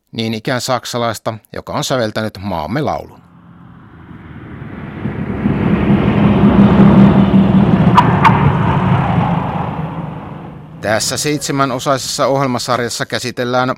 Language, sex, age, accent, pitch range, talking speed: Finnish, male, 60-79, native, 110-140 Hz, 55 wpm